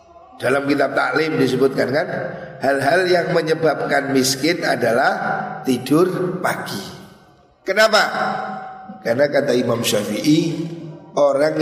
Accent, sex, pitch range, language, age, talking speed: native, male, 130-160 Hz, Indonesian, 50-69, 95 wpm